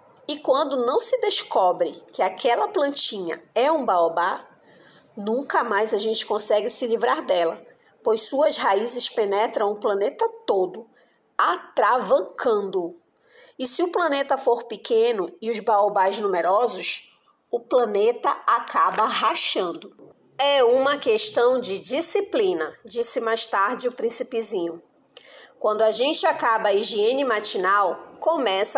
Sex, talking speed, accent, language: female, 125 wpm, Brazilian, Portuguese